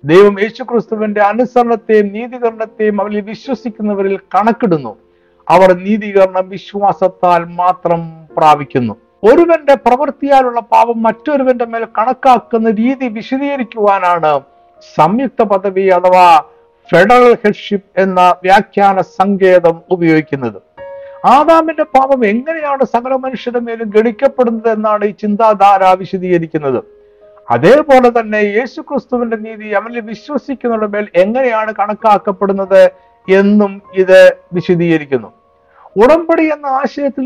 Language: Malayalam